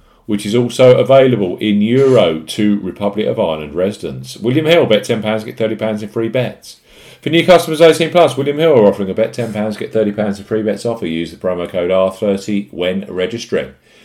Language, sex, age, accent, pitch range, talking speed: English, male, 40-59, British, 95-130 Hz, 190 wpm